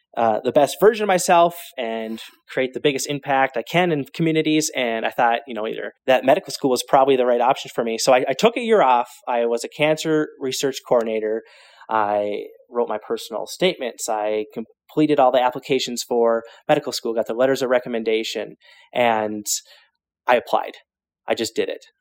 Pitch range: 115-145 Hz